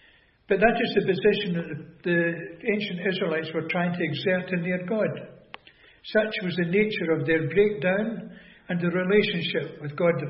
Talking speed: 170 wpm